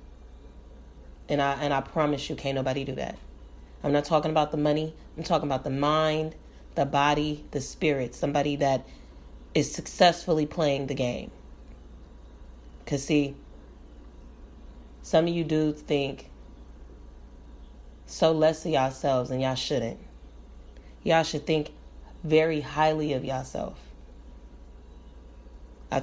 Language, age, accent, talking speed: English, 30-49, American, 125 wpm